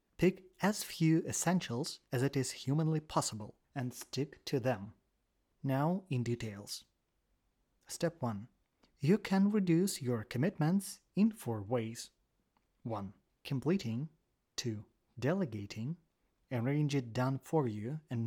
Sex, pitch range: male, 115-160 Hz